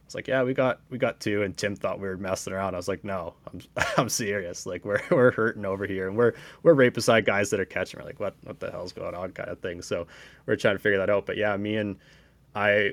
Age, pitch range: 20-39, 95-105 Hz